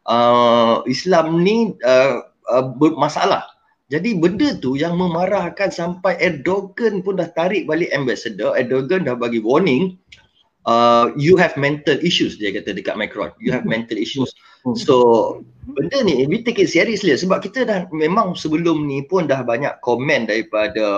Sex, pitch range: male, 130-200 Hz